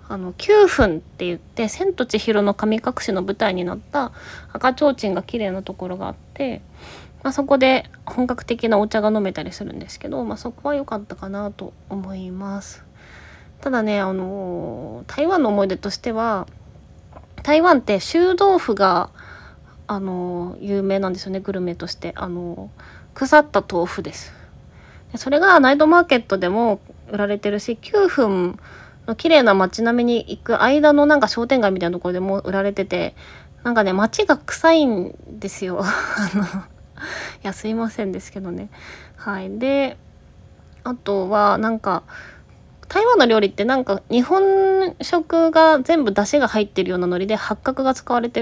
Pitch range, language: 195-270 Hz, Japanese